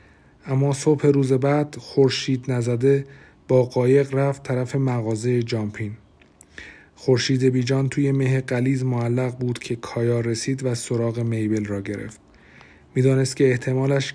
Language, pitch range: Persian, 110-140 Hz